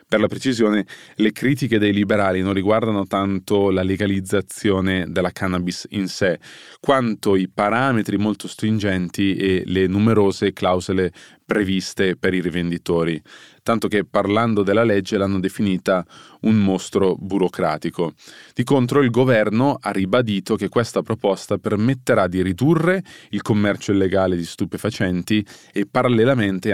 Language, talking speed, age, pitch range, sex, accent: Italian, 130 wpm, 20-39, 90-110 Hz, male, native